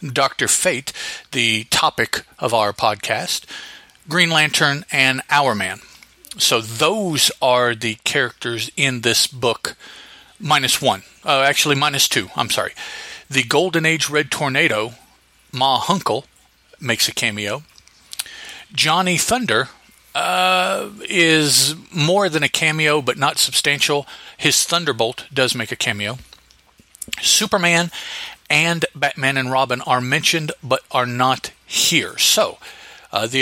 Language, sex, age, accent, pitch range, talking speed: English, male, 40-59, American, 125-165 Hz, 125 wpm